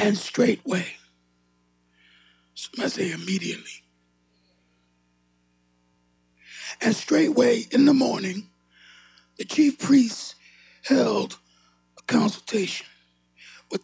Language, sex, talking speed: English, male, 75 wpm